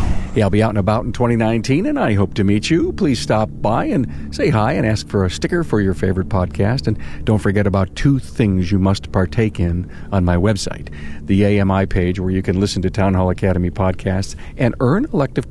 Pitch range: 95-120 Hz